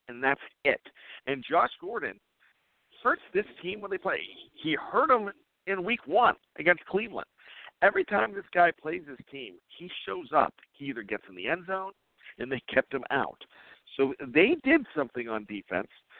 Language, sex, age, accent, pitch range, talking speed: English, male, 50-69, American, 130-180 Hz, 180 wpm